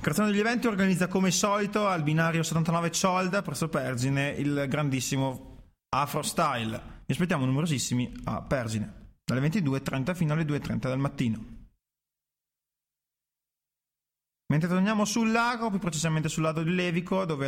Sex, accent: male, native